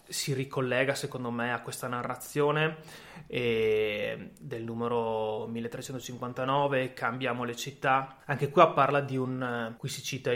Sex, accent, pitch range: male, native, 120-145 Hz